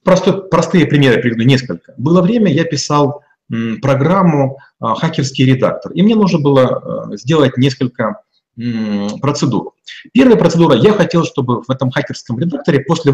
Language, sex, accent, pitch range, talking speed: Russian, male, native, 130-165 Hz, 130 wpm